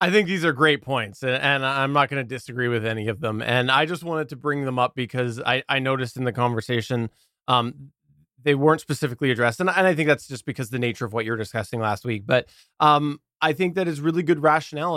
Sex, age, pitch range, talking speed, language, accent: male, 20-39, 120-150 Hz, 240 wpm, English, American